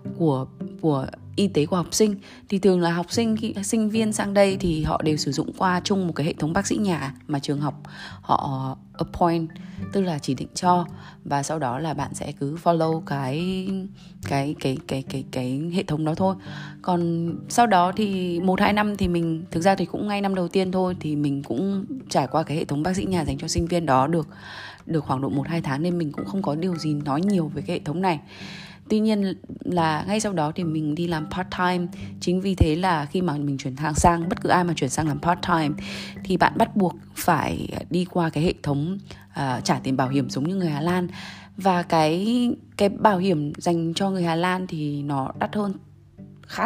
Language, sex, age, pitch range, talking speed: Vietnamese, female, 20-39, 150-185 Hz, 230 wpm